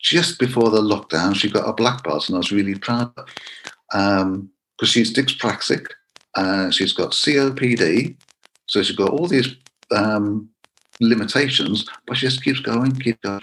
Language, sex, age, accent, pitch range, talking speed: English, male, 50-69, British, 100-125 Hz, 170 wpm